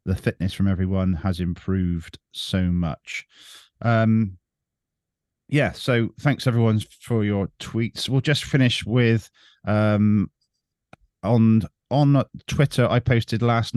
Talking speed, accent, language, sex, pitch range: 120 wpm, British, English, male, 95-120 Hz